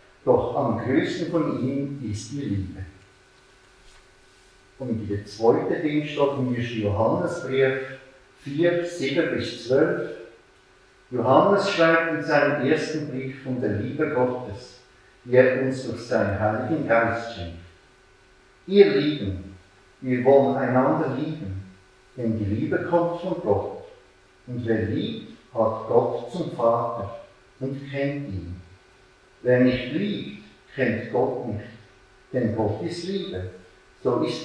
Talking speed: 120 wpm